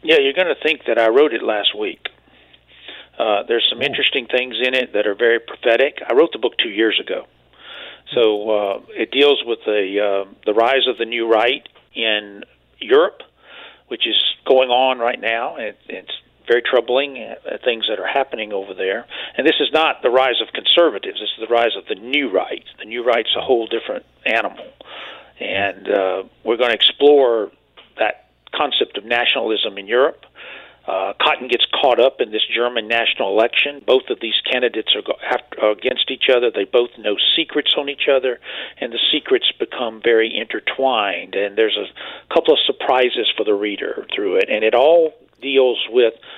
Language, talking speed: English, 185 wpm